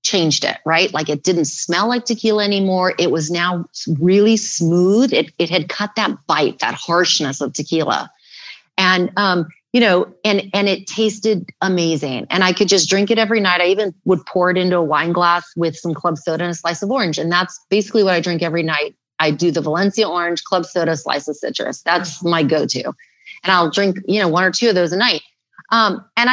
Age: 30-49